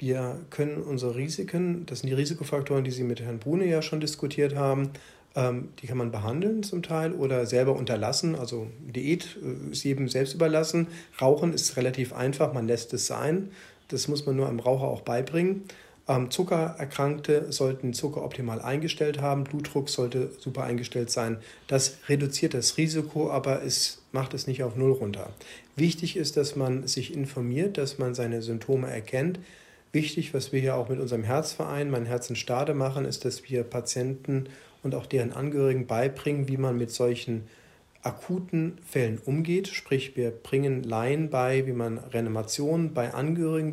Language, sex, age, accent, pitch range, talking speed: German, male, 40-59, German, 125-155 Hz, 165 wpm